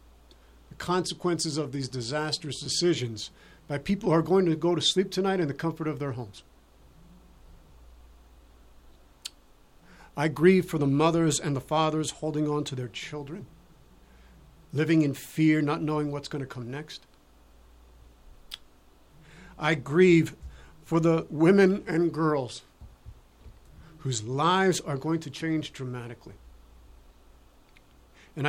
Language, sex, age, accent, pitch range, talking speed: English, male, 50-69, American, 115-160 Hz, 125 wpm